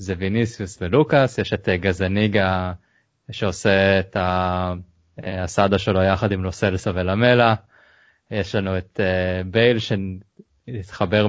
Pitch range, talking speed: 95-115 Hz, 100 wpm